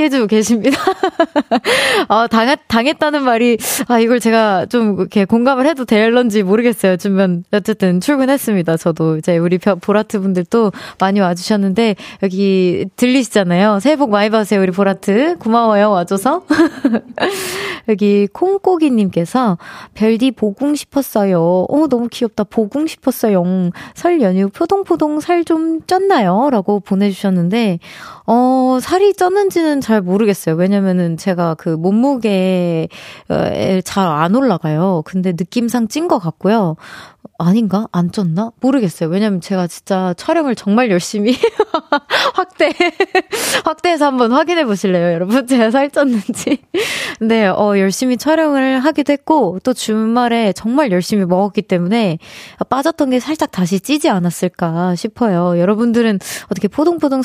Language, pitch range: Korean, 190-280 Hz